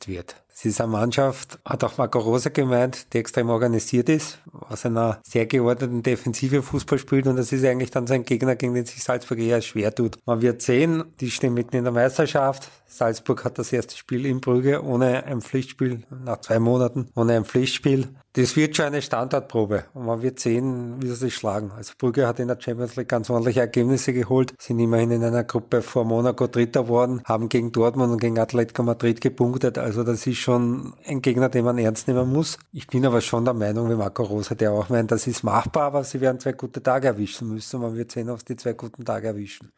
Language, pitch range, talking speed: German, 120-135 Hz, 220 wpm